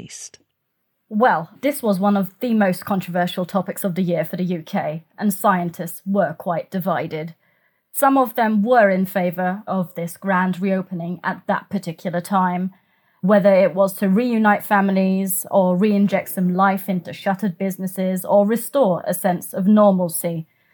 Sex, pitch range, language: female, 180-205 Hz, English